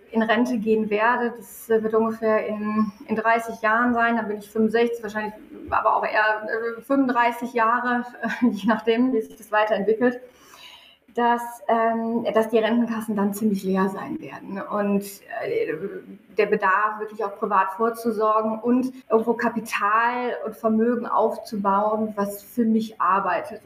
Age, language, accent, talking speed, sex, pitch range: 20-39, German, German, 140 wpm, female, 215-235 Hz